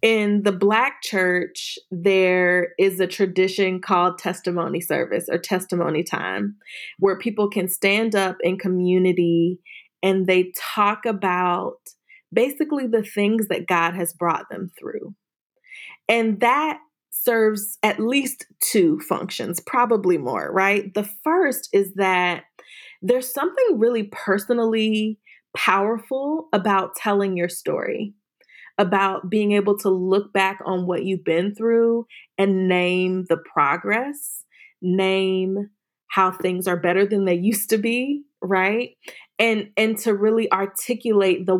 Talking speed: 130 wpm